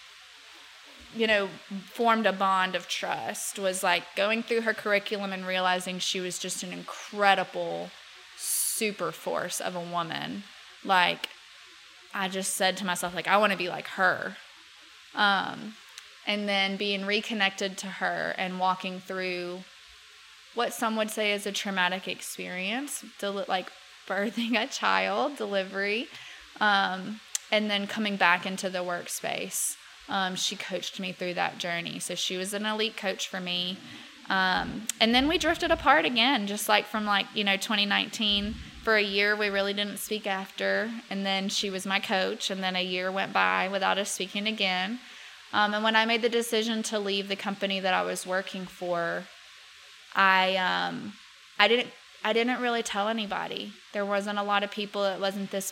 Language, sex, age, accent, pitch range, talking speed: English, female, 20-39, American, 190-215 Hz, 170 wpm